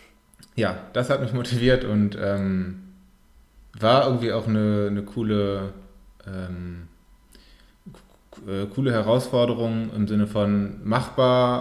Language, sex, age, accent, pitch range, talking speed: German, male, 20-39, German, 95-110 Hz, 105 wpm